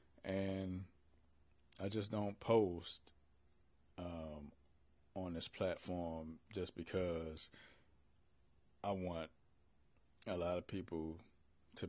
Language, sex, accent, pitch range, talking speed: English, male, American, 75-105 Hz, 90 wpm